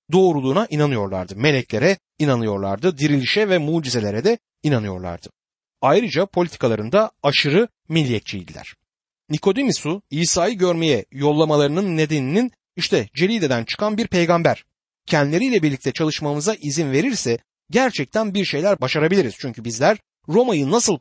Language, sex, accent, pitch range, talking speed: Turkish, male, native, 130-195 Hz, 105 wpm